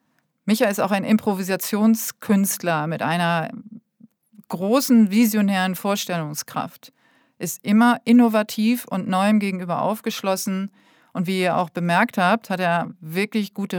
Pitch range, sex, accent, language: 185-235 Hz, female, German, German